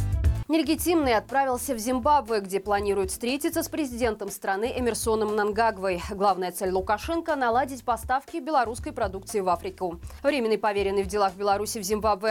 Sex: female